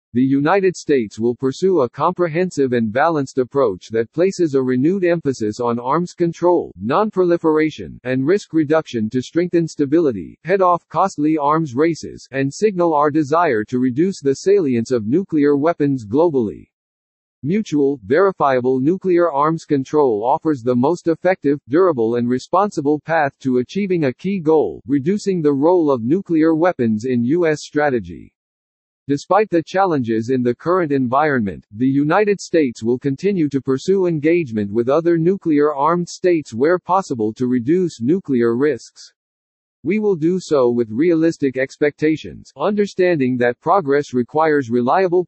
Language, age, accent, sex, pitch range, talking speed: English, 50-69, American, male, 130-175 Hz, 140 wpm